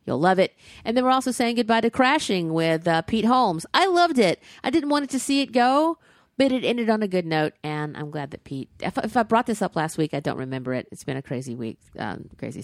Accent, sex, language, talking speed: American, female, English, 270 wpm